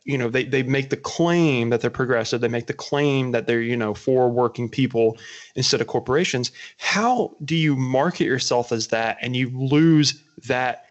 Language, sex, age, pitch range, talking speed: English, male, 20-39, 120-145 Hz, 195 wpm